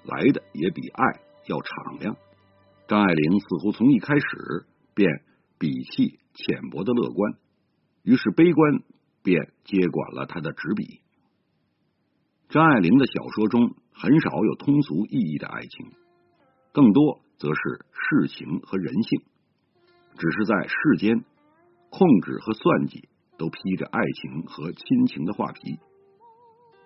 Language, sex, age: Chinese, male, 50-69